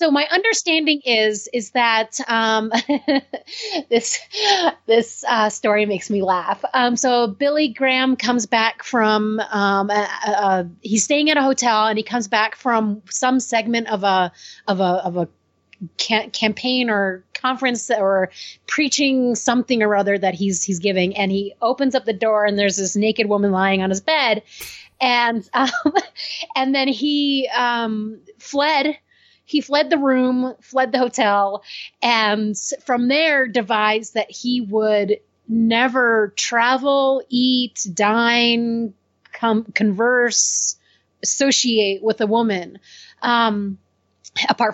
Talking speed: 135 wpm